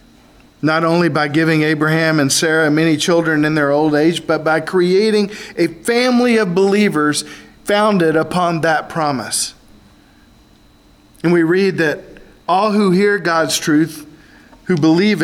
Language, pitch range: English, 155-190 Hz